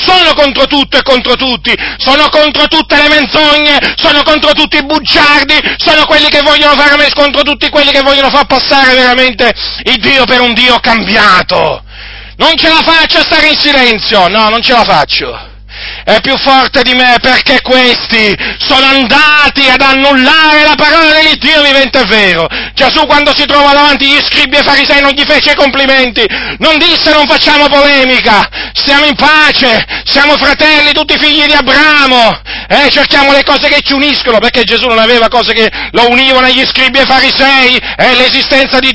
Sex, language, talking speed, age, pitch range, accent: male, Italian, 175 wpm, 40-59, 230-290 Hz, native